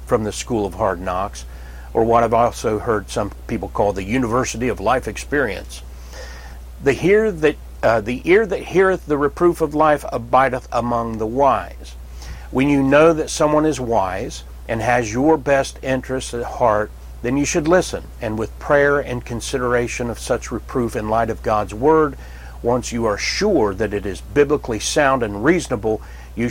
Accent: American